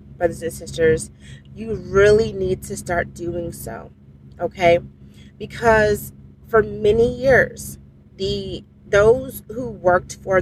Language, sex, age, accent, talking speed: English, female, 30-49, American, 115 wpm